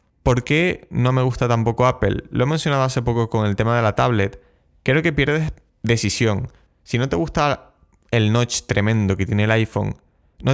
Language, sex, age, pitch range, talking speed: Spanish, male, 20-39, 100-120 Hz, 195 wpm